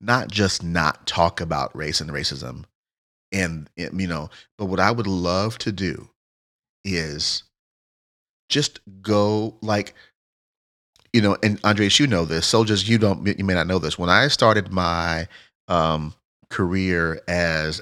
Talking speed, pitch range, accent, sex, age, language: 155 wpm, 85-105 Hz, American, male, 40-59, English